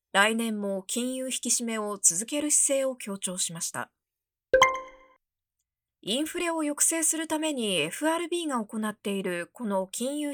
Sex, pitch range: female, 195-300 Hz